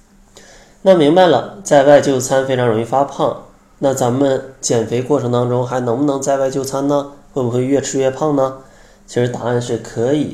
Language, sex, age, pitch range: Chinese, male, 20-39, 120-145 Hz